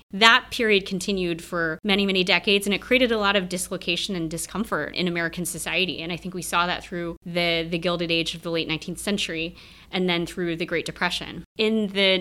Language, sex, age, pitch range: English, female, 20-39, 175-210 Hz